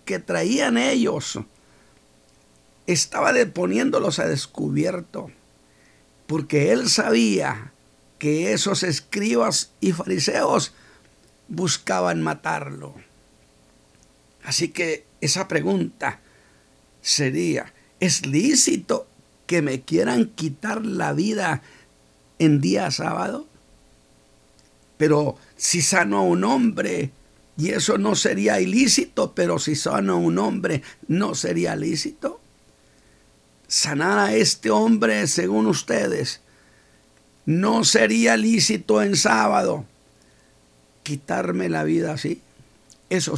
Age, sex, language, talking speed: 60-79, male, Spanish, 95 wpm